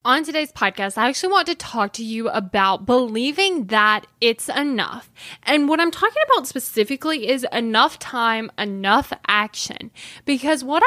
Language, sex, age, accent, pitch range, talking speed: English, female, 10-29, American, 205-280 Hz, 155 wpm